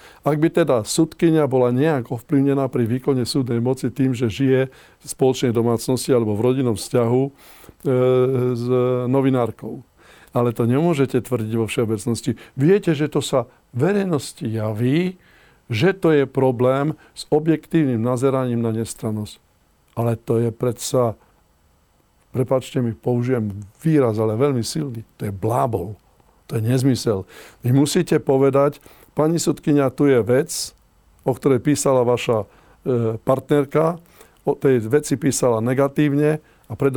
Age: 50-69